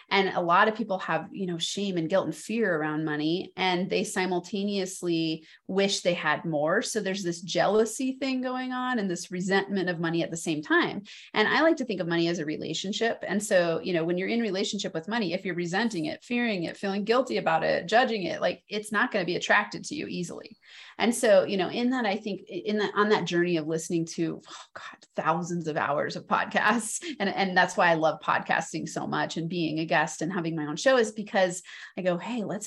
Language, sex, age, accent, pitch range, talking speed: English, female, 30-49, American, 170-230 Hz, 235 wpm